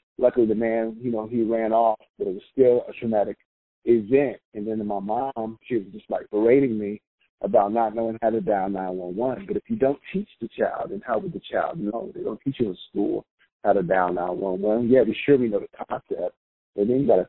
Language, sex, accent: English, male, American